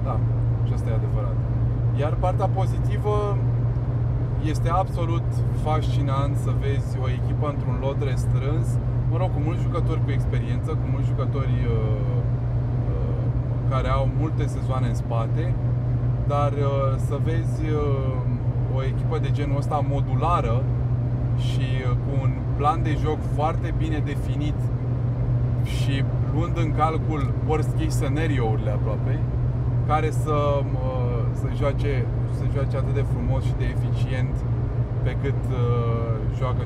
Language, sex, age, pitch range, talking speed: Romanian, male, 20-39, 120-125 Hz, 130 wpm